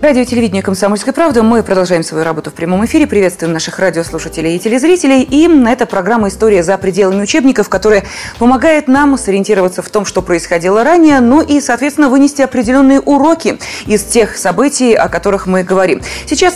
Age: 20-39